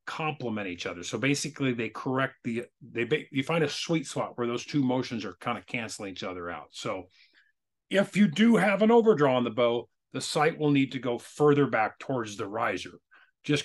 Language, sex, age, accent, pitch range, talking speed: English, male, 40-59, American, 120-150 Hz, 205 wpm